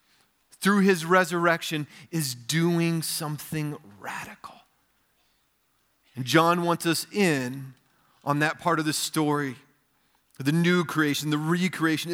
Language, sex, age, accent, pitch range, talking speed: English, male, 40-59, American, 125-160 Hz, 115 wpm